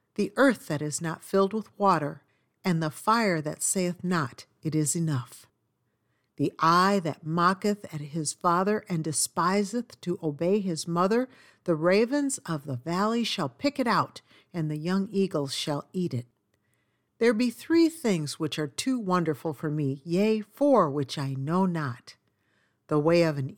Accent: American